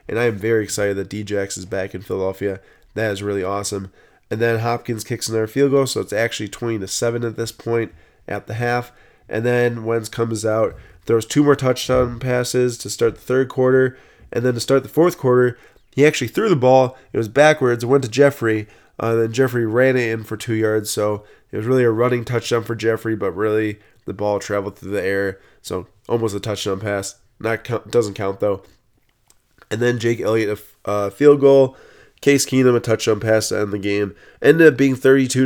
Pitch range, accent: 105-125 Hz, American